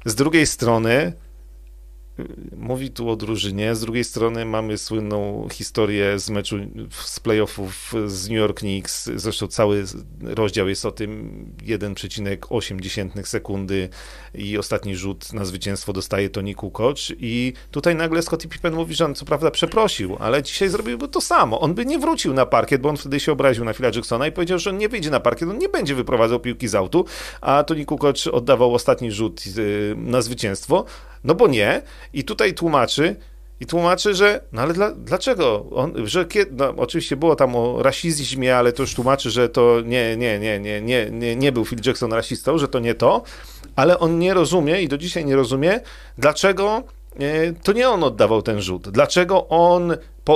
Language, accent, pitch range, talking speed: Polish, native, 110-165 Hz, 180 wpm